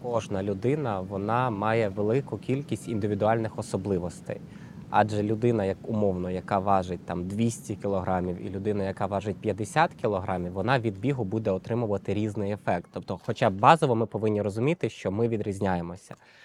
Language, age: Ukrainian, 20-39